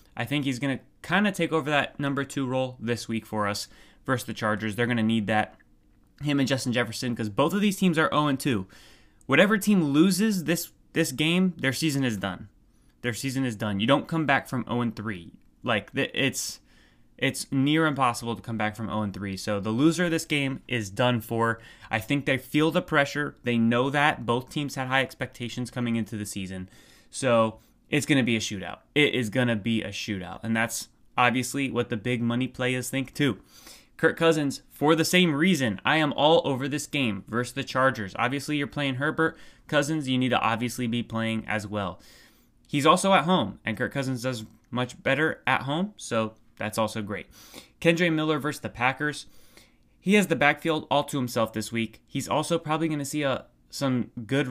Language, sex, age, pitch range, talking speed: English, male, 20-39, 115-150 Hz, 200 wpm